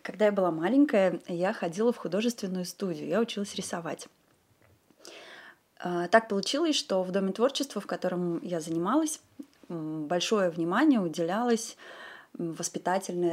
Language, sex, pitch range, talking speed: Russian, female, 175-240 Hz, 115 wpm